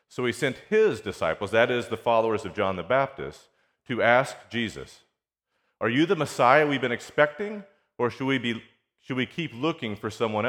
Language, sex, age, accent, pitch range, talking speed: English, male, 40-59, American, 100-125 Hz, 190 wpm